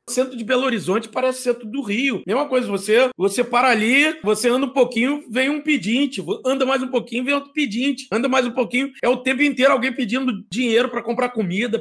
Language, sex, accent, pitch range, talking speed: Portuguese, male, Brazilian, 245-295 Hz, 220 wpm